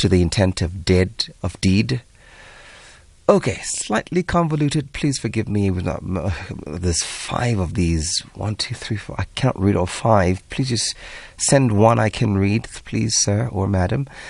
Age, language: 30-49, English